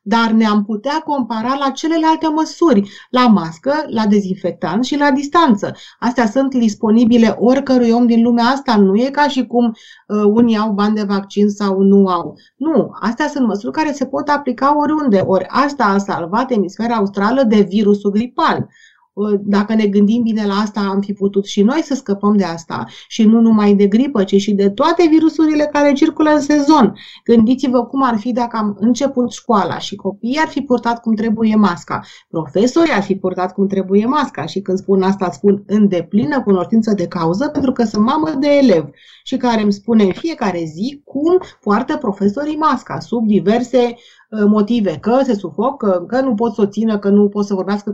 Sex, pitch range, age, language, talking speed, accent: female, 205-265 Hz, 30-49, Romanian, 185 wpm, native